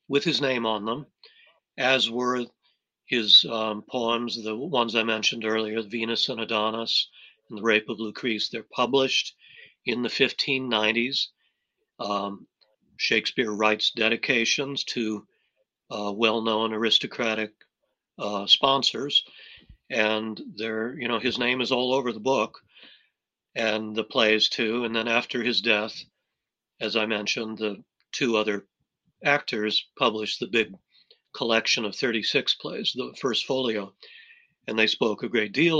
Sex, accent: male, American